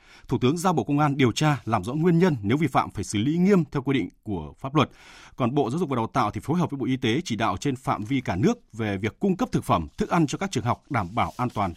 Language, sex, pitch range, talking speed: Vietnamese, male, 125-170 Hz, 315 wpm